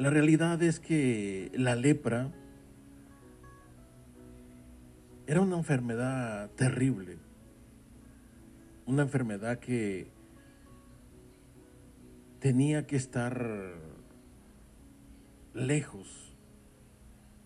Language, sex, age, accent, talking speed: Spanish, male, 50-69, Mexican, 60 wpm